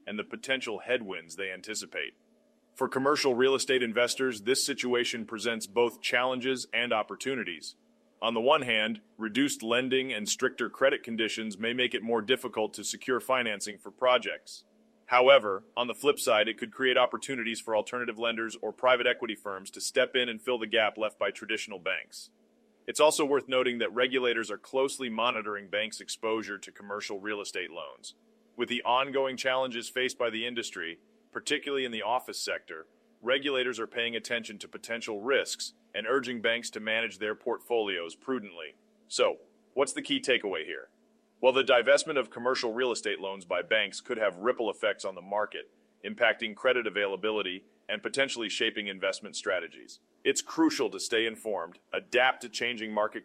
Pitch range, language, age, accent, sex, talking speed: 115-140 Hz, English, 30-49, American, male, 170 wpm